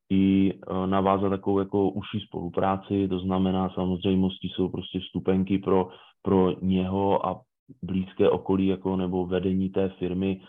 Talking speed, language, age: 130 wpm, Czech, 20-39